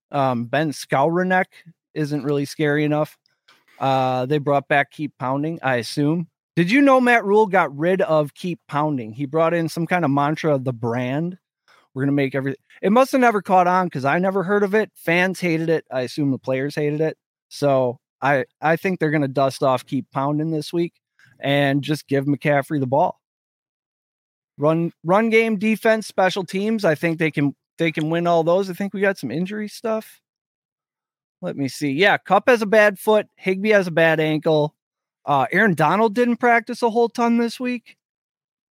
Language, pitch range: English, 145-195 Hz